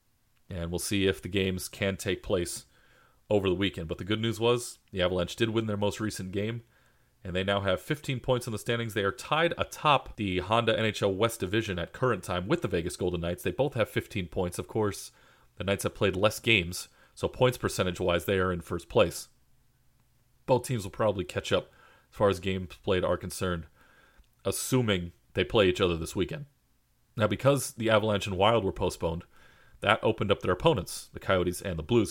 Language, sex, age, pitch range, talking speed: English, male, 30-49, 95-120 Hz, 205 wpm